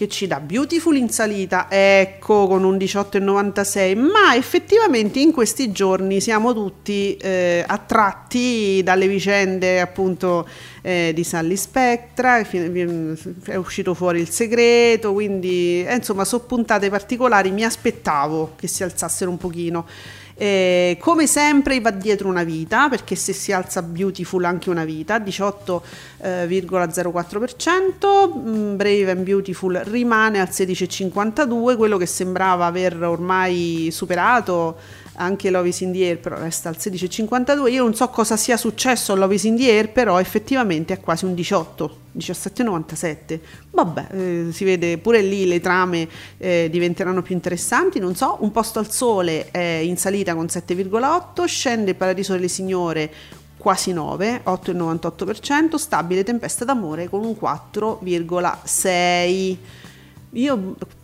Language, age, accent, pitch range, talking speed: Italian, 40-59, native, 175-220 Hz, 130 wpm